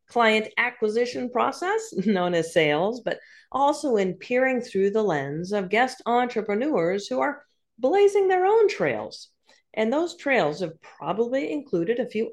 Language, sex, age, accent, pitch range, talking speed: English, female, 40-59, American, 205-330 Hz, 145 wpm